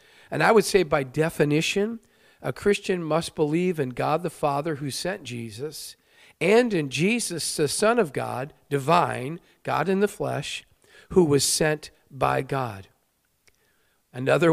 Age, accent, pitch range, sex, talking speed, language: 50-69, American, 140-165 Hz, male, 145 wpm, English